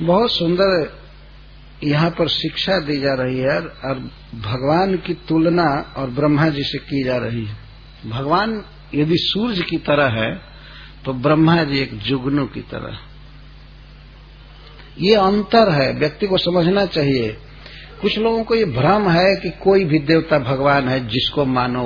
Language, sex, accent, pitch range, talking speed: English, male, Indian, 135-175 Hz, 150 wpm